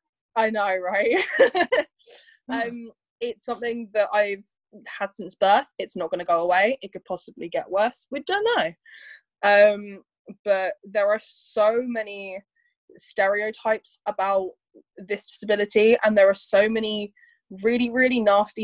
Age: 10-29